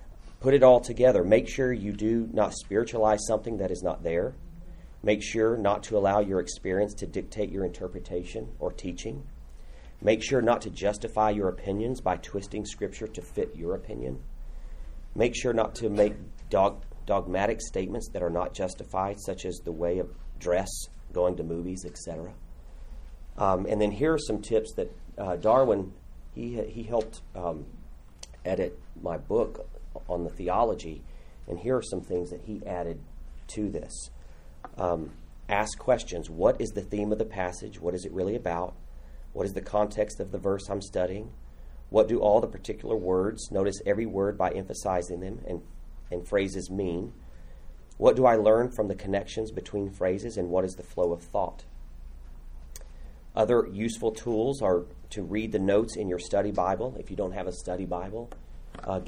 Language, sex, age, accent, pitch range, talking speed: English, male, 40-59, American, 80-110 Hz, 170 wpm